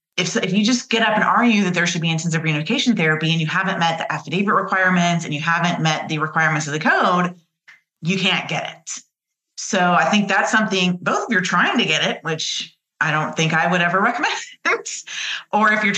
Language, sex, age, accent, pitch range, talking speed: English, female, 30-49, American, 160-195 Hz, 225 wpm